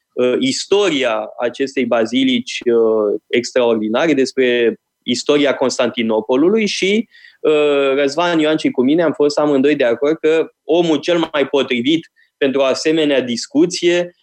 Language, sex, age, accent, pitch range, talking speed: Romanian, male, 20-39, native, 130-180 Hz, 120 wpm